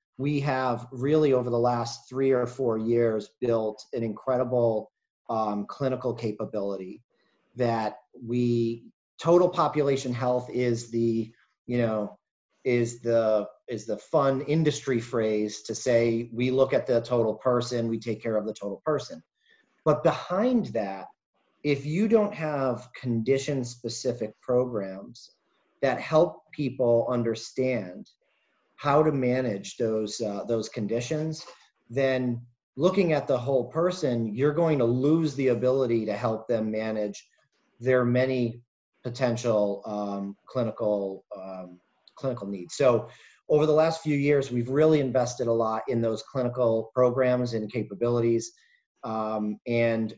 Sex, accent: male, American